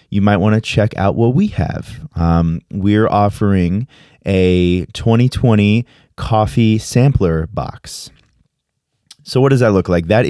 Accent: American